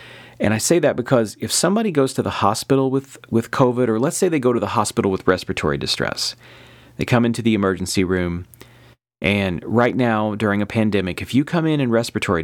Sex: male